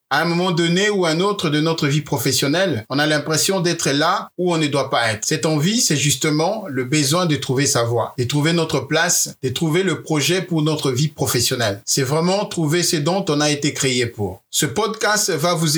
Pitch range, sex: 140-175 Hz, male